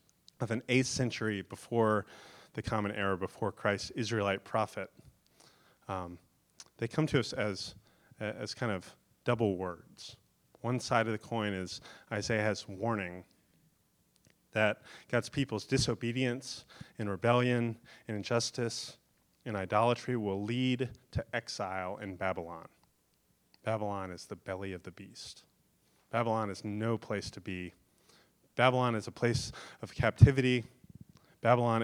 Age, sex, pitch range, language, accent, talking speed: 30-49, male, 100-125 Hz, English, American, 125 wpm